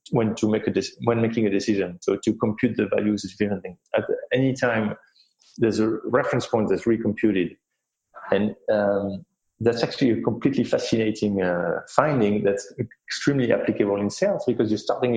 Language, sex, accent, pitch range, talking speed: English, male, French, 100-170 Hz, 175 wpm